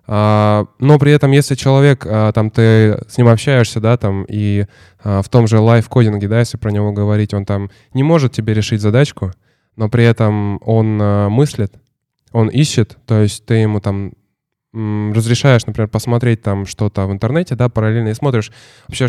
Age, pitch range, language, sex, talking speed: 10-29, 105-130 Hz, Russian, male, 165 wpm